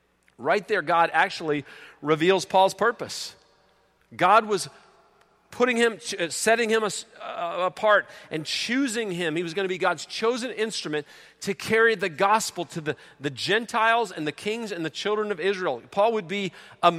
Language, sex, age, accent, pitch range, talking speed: English, male, 40-59, American, 160-205 Hz, 160 wpm